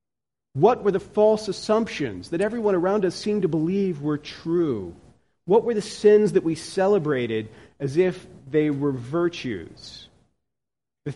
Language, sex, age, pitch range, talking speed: English, male, 40-59, 120-155 Hz, 145 wpm